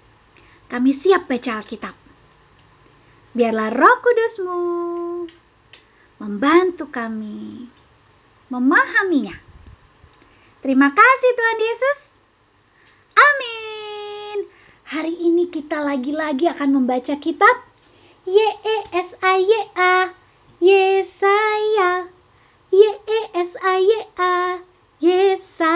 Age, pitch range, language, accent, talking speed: 20-39, 275-390 Hz, Indonesian, American, 60 wpm